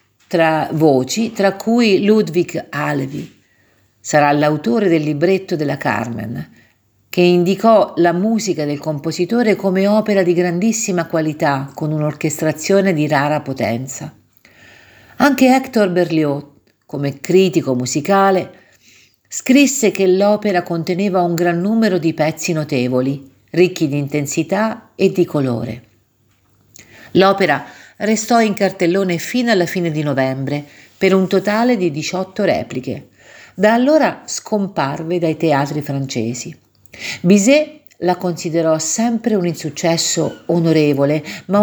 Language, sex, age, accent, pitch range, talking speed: Italian, female, 50-69, native, 145-195 Hz, 115 wpm